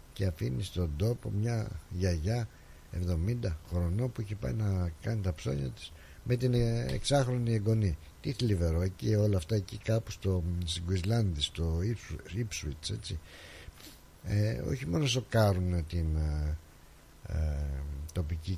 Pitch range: 85-110 Hz